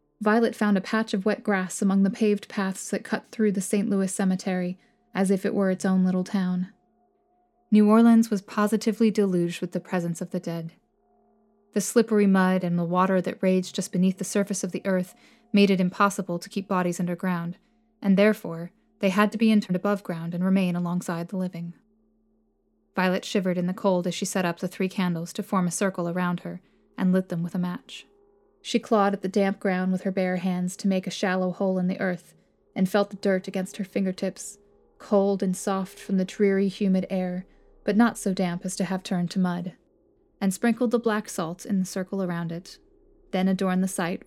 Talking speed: 210 wpm